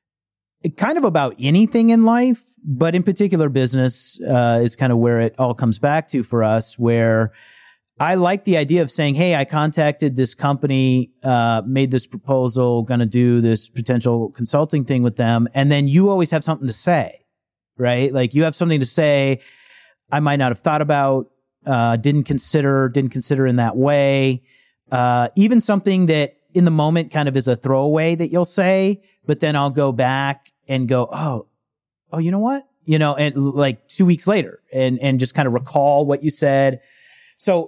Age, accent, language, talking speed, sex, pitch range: 30-49, American, English, 190 wpm, male, 130-170 Hz